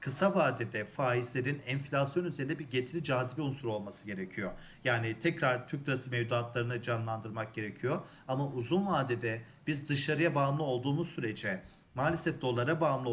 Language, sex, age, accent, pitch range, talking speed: Turkish, male, 40-59, native, 125-165 Hz, 135 wpm